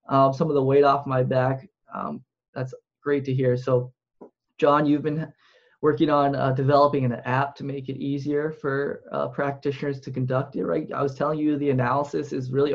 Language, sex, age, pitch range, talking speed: English, male, 20-39, 135-150 Hz, 200 wpm